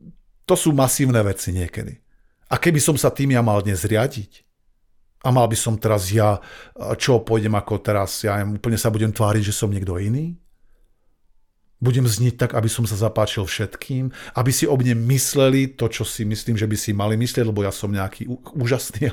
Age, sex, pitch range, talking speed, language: 50-69, male, 110-145 Hz, 185 wpm, Slovak